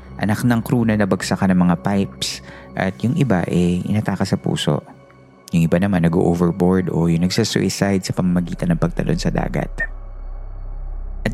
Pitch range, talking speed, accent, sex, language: 85-115 Hz, 155 wpm, native, male, Filipino